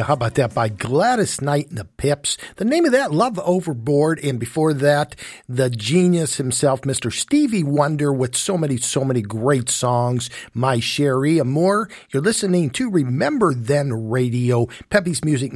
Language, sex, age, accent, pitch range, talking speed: English, male, 50-69, American, 135-190 Hz, 160 wpm